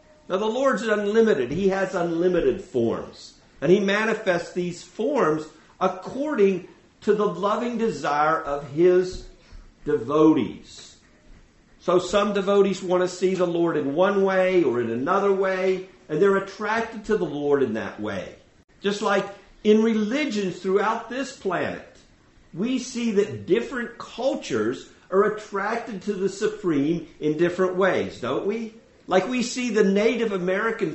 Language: English